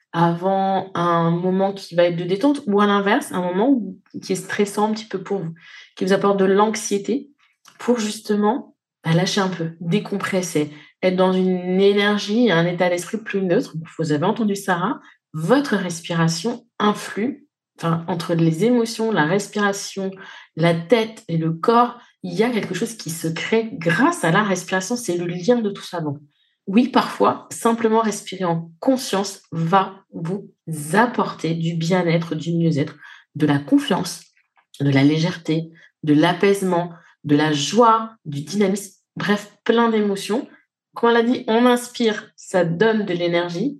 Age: 20-39